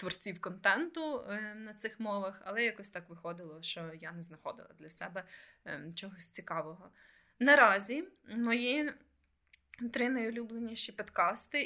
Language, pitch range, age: Ukrainian, 170-215 Hz, 20-39